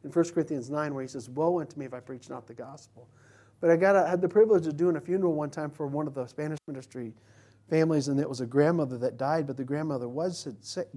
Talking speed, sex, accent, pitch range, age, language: 265 wpm, male, American, 115-160 Hz, 40-59, English